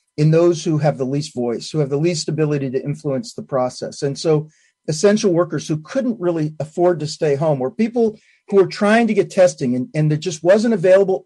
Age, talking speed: 40-59, 220 wpm